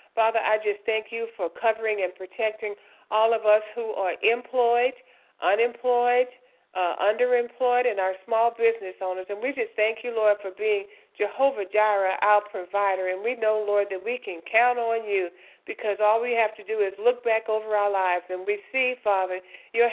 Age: 50-69